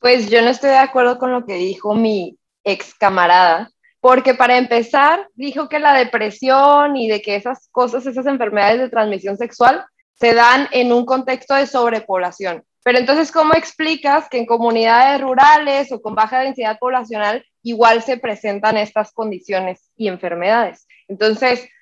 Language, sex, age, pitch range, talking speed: Spanish, female, 20-39, 220-275 Hz, 160 wpm